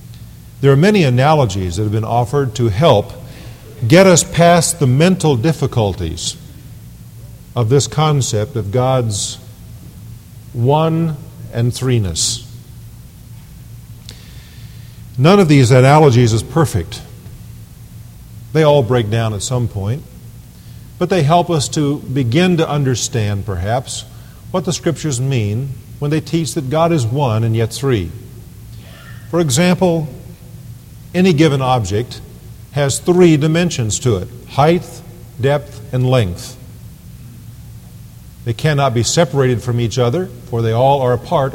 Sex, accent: male, American